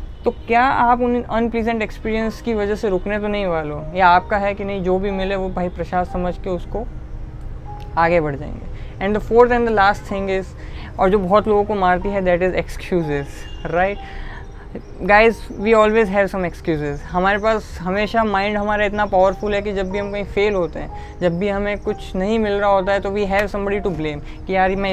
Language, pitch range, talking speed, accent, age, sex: Hindi, 185-225 Hz, 215 wpm, native, 20-39, female